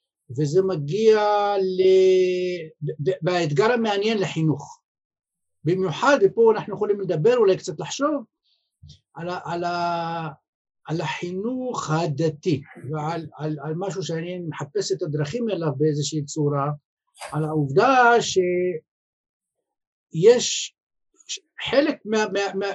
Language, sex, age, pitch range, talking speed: Hebrew, male, 50-69, 165-250 Hz, 100 wpm